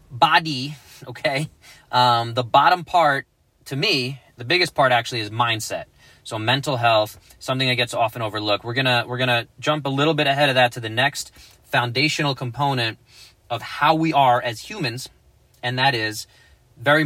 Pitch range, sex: 115-145 Hz, male